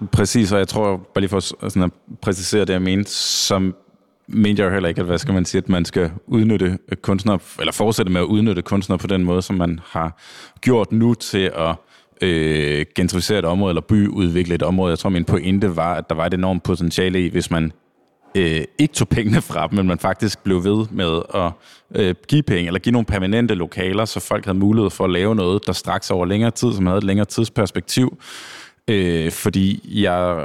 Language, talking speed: Danish, 210 wpm